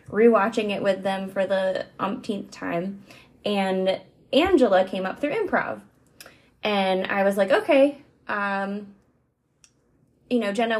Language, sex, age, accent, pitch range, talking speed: English, female, 20-39, American, 190-235 Hz, 130 wpm